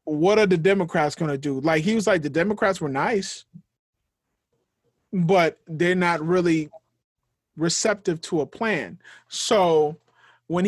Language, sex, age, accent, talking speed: English, male, 30-49, American, 140 wpm